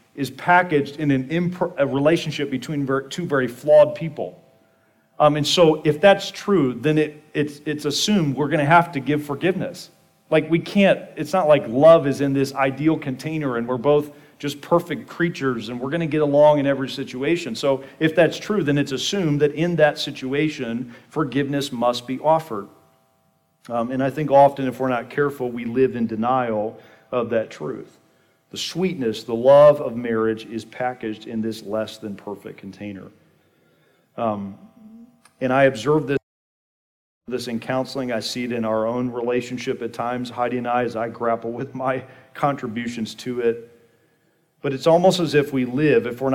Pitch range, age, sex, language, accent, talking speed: 120-150 Hz, 40-59, male, English, American, 175 wpm